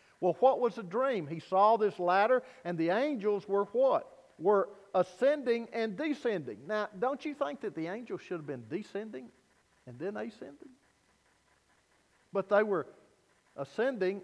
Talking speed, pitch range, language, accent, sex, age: 150 wpm, 175-245 Hz, English, American, male, 50-69